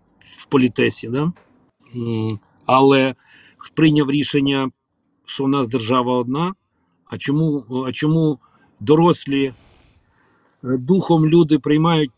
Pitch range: 130-170 Hz